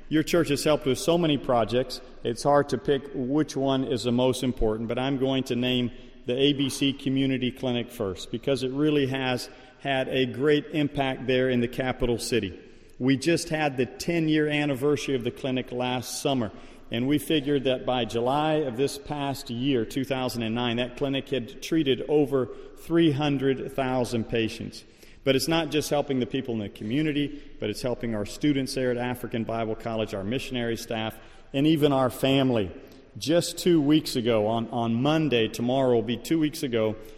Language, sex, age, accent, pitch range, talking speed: English, male, 40-59, American, 120-145 Hz, 180 wpm